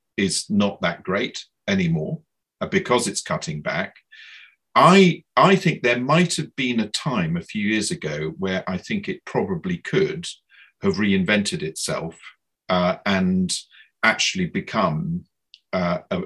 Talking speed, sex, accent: 135 wpm, male, British